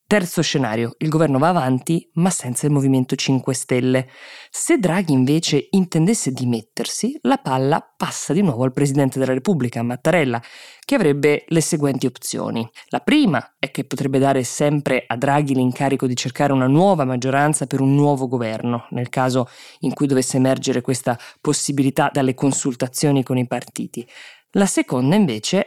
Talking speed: 155 wpm